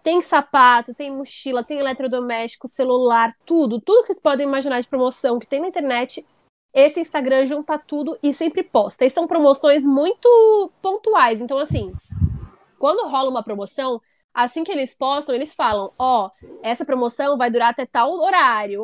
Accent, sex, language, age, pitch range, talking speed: Brazilian, female, Portuguese, 10-29, 240-310 Hz, 160 wpm